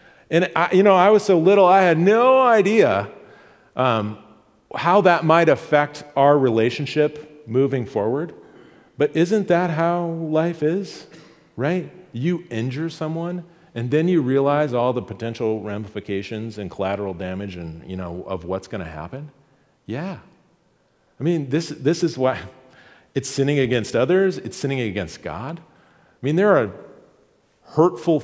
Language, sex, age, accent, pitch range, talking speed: English, male, 40-59, American, 115-165 Hz, 145 wpm